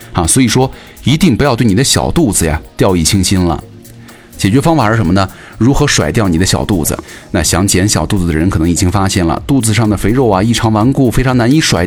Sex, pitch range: male, 90-120 Hz